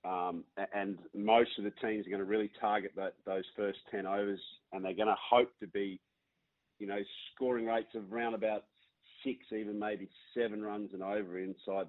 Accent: Australian